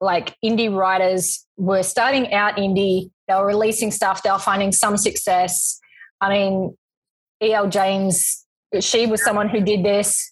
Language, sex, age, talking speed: English, female, 20-39, 150 wpm